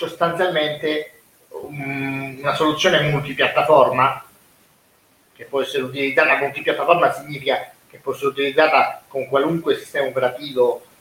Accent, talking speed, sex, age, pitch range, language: native, 105 wpm, male, 30-49, 125-155 Hz, Italian